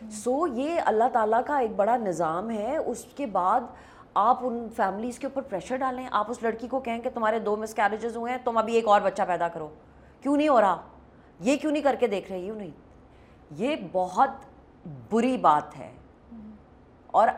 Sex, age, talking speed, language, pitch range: female, 30-49, 195 wpm, Urdu, 180-240 Hz